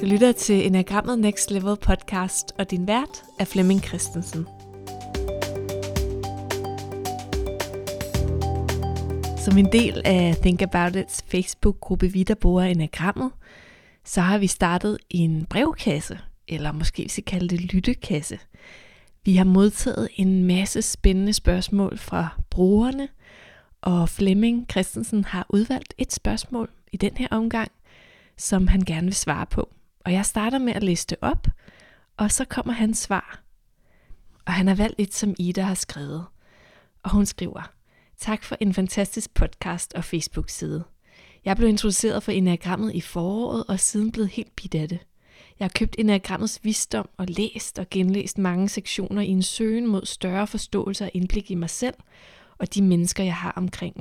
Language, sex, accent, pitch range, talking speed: Danish, female, native, 180-210 Hz, 150 wpm